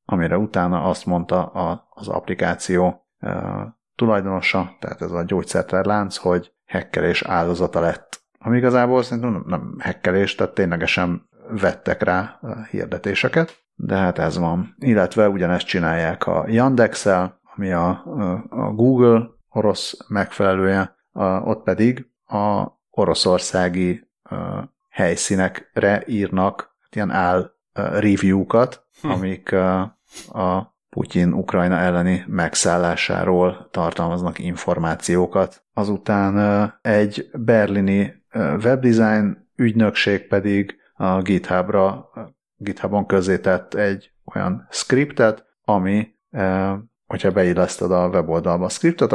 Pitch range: 90-110 Hz